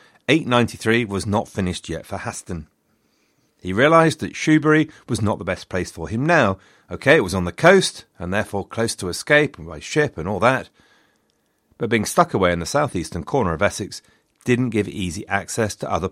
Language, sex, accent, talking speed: English, male, British, 195 wpm